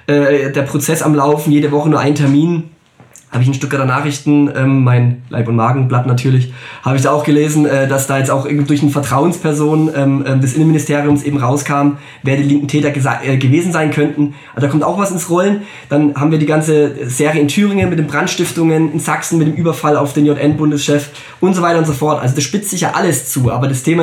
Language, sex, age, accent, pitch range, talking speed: German, male, 20-39, German, 135-160 Hz, 210 wpm